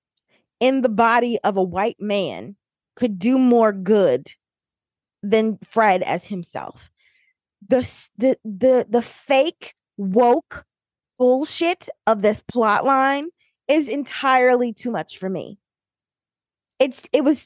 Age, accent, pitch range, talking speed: 20-39, American, 195-260 Hz, 115 wpm